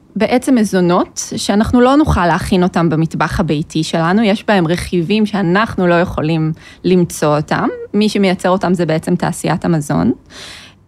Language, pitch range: Hebrew, 170-230 Hz